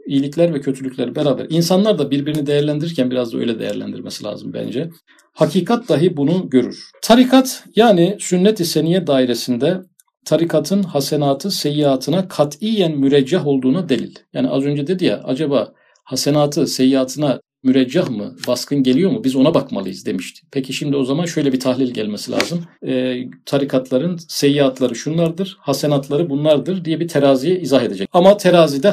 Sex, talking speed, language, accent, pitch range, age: male, 145 wpm, Turkish, native, 135-180 Hz, 50-69